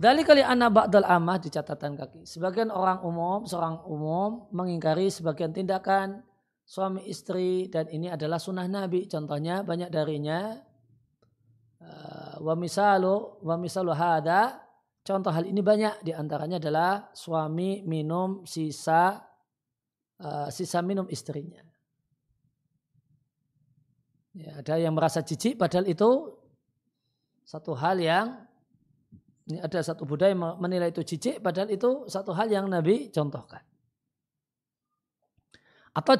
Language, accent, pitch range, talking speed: Indonesian, native, 155-195 Hz, 110 wpm